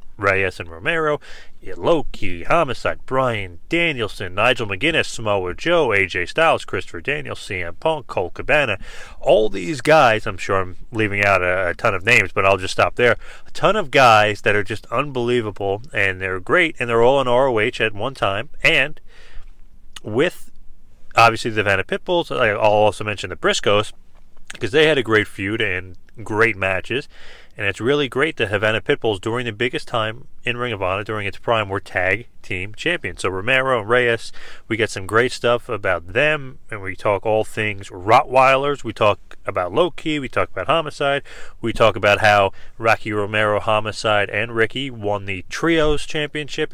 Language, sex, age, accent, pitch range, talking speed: English, male, 30-49, American, 100-130 Hz, 175 wpm